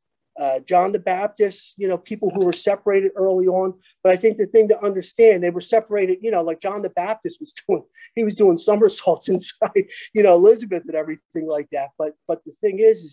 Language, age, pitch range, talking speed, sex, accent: English, 50-69, 175-230 Hz, 220 wpm, male, American